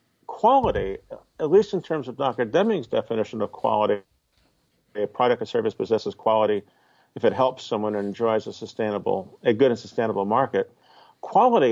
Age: 50-69